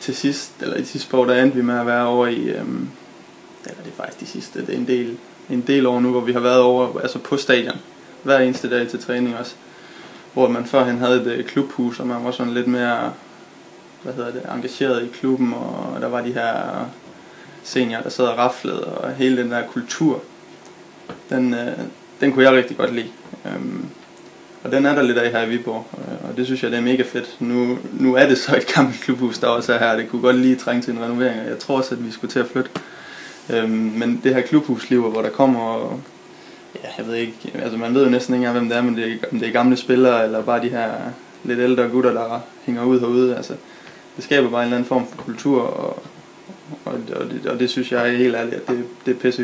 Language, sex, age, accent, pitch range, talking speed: Danish, male, 20-39, native, 120-125 Hz, 240 wpm